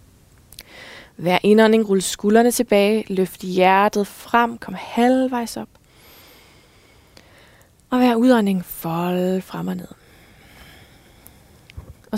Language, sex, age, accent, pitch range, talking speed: Danish, female, 20-39, native, 185-235 Hz, 95 wpm